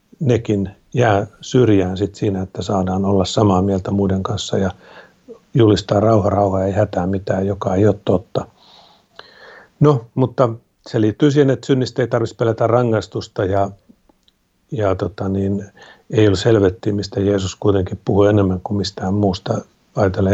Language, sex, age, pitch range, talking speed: Finnish, male, 50-69, 100-125 Hz, 150 wpm